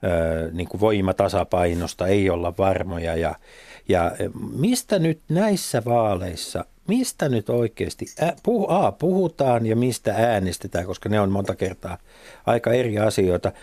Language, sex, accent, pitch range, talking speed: Finnish, male, native, 100-140 Hz, 125 wpm